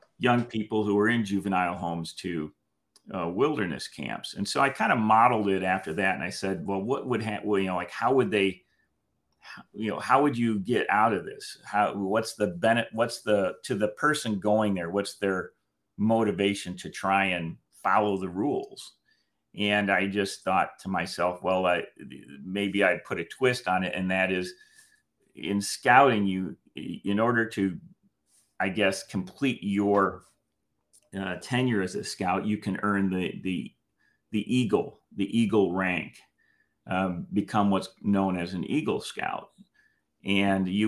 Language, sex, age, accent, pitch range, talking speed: English, male, 40-59, American, 90-105 Hz, 170 wpm